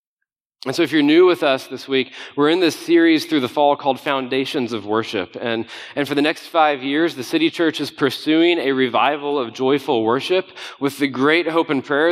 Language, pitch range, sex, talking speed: English, 130-170 Hz, male, 215 wpm